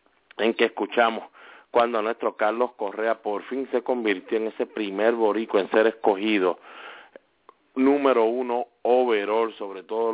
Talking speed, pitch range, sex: 135 wpm, 105-120 Hz, male